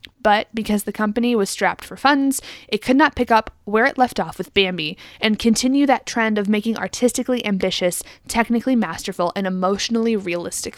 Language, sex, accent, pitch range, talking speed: English, female, American, 200-250 Hz, 180 wpm